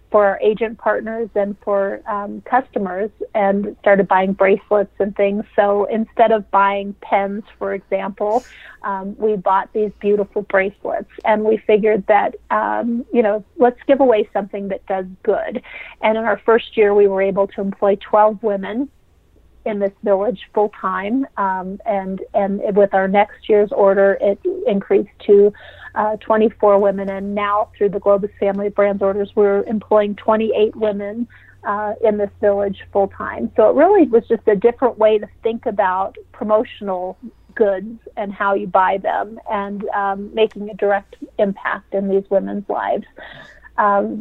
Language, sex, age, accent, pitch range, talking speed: English, female, 40-59, American, 200-220 Hz, 165 wpm